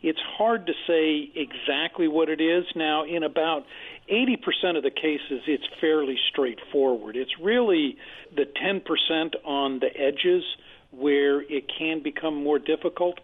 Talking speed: 150 wpm